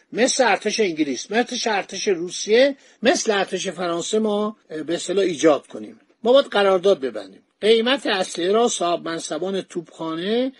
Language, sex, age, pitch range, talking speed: Persian, male, 50-69, 180-230 Hz, 140 wpm